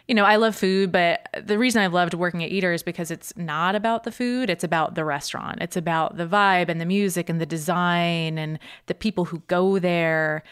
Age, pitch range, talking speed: 20-39, 160-195 Hz, 230 wpm